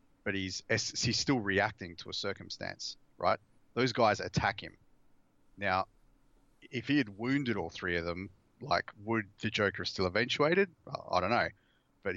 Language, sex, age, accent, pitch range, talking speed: English, male, 30-49, Australian, 95-115 Hz, 165 wpm